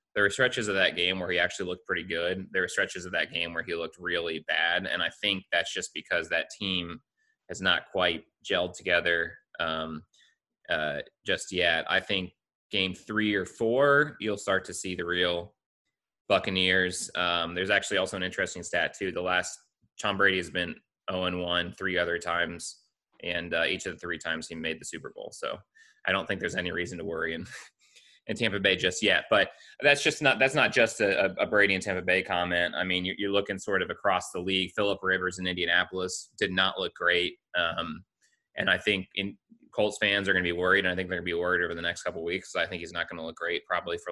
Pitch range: 85-100 Hz